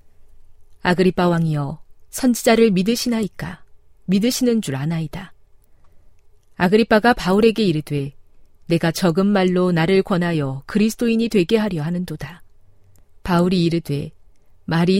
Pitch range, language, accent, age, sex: 145-205 Hz, Korean, native, 40-59, female